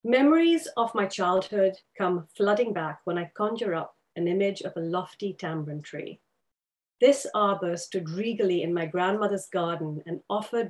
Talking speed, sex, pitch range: 155 wpm, female, 175-220 Hz